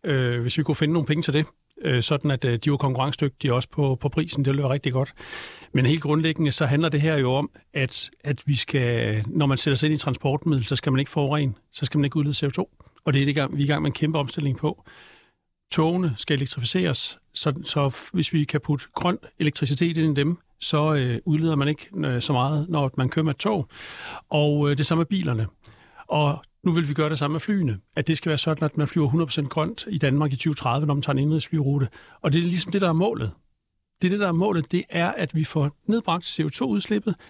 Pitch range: 135-160 Hz